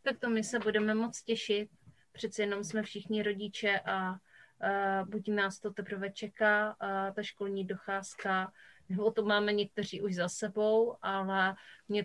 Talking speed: 160 wpm